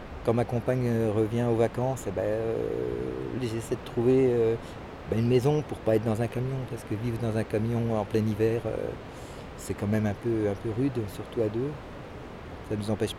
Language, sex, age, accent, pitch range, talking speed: French, male, 50-69, French, 105-120 Hz, 215 wpm